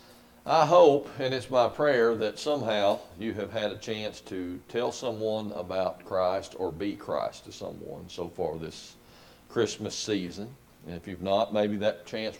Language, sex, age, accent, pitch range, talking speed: English, male, 50-69, American, 85-120 Hz, 170 wpm